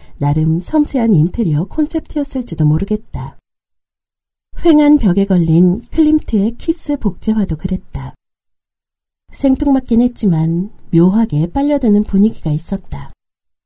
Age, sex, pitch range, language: 40-59, female, 170-235 Hz, Korean